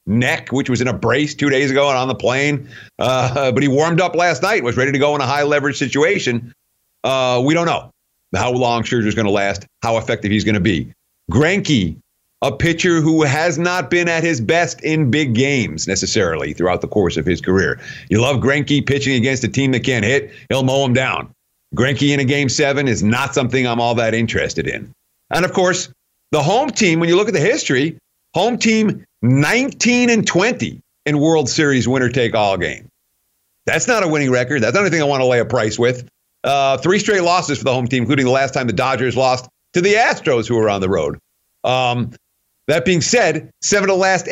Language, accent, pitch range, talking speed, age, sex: English, American, 125-165 Hz, 215 wpm, 50-69, male